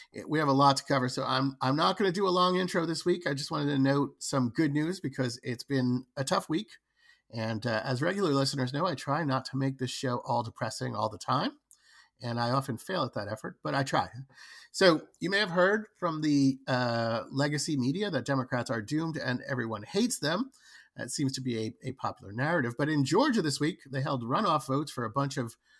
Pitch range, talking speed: 130-175 Hz, 230 wpm